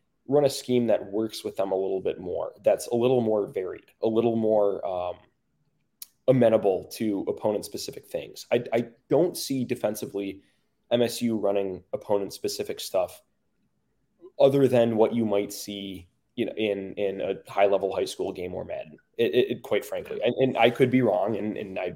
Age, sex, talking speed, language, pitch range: 20-39, male, 180 wpm, English, 100-140 Hz